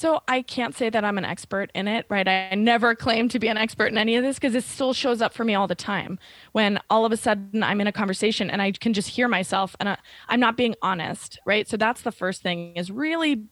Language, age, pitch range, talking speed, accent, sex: English, 20-39, 200-230 Hz, 265 wpm, American, female